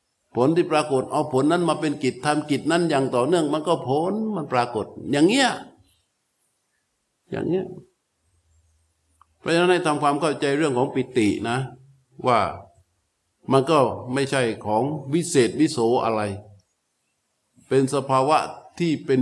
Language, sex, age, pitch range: Thai, male, 60-79, 120-150 Hz